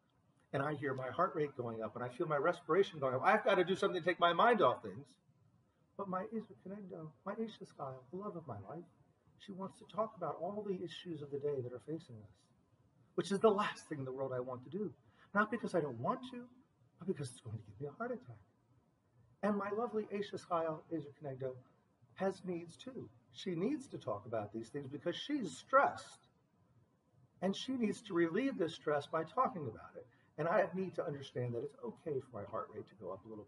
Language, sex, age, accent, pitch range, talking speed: English, male, 40-59, American, 125-180 Hz, 235 wpm